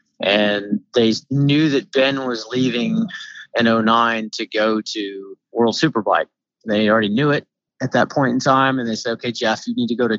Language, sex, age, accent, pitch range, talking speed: English, male, 30-49, American, 110-125 Hz, 195 wpm